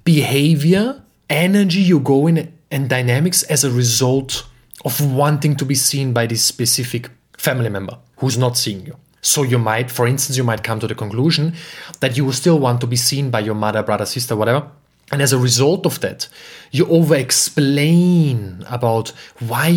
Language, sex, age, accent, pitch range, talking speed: English, male, 30-49, German, 125-175 Hz, 180 wpm